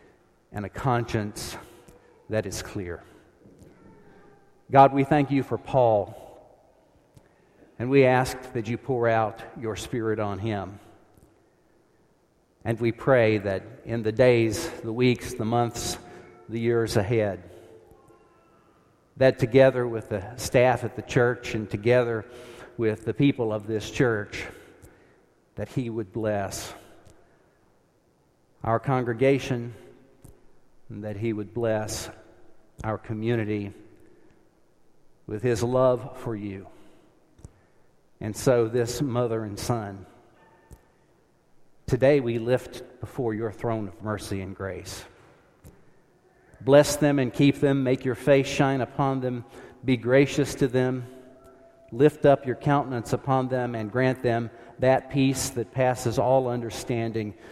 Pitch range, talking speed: 110-130 Hz, 120 wpm